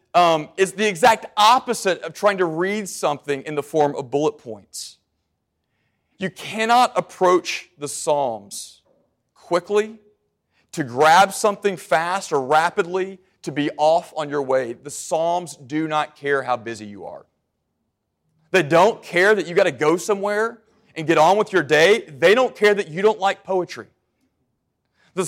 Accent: American